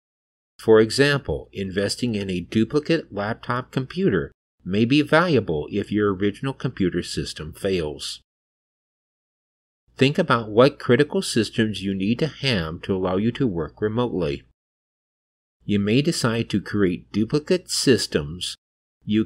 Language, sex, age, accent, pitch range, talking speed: English, male, 50-69, American, 90-125 Hz, 125 wpm